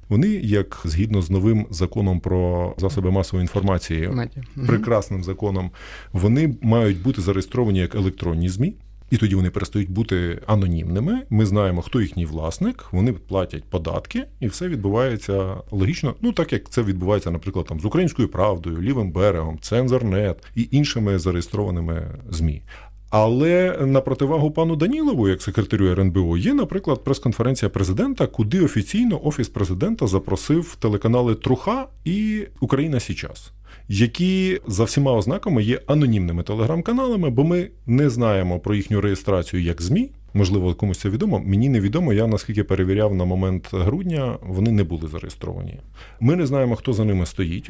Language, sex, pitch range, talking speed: Ukrainian, male, 95-135 Hz, 145 wpm